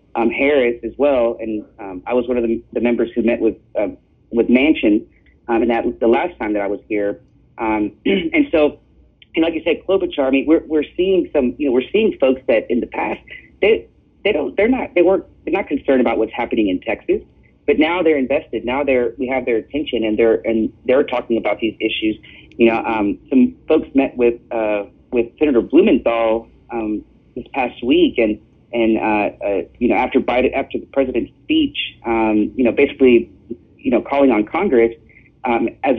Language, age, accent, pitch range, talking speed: English, 40-59, American, 115-145 Hz, 205 wpm